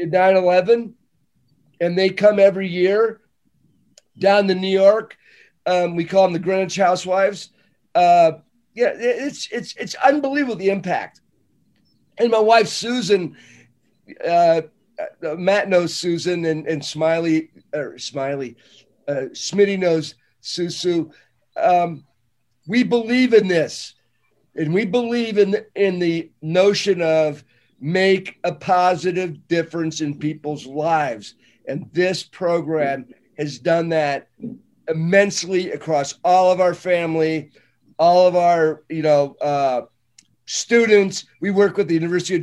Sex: male